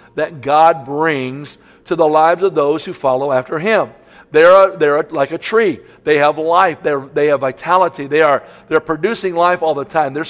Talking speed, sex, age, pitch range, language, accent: 205 wpm, male, 50-69, 155-180 Hz, English, American